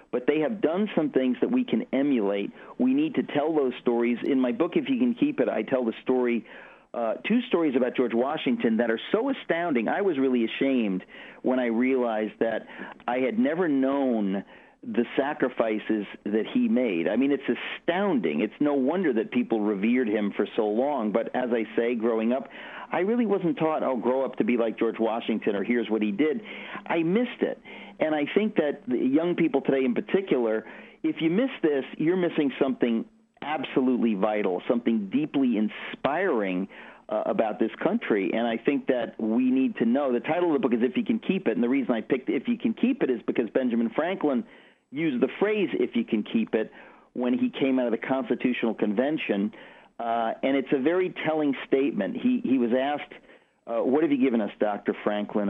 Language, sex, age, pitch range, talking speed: English, male, 50-69, 115-165 Hz, 205 wpm